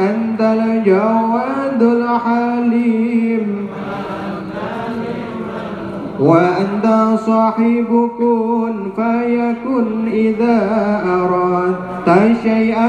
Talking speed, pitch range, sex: 50 wpm, 205-235 Hz, male